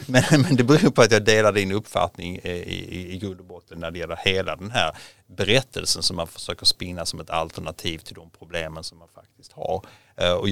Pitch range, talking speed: 90-115 Hz, 190 wpm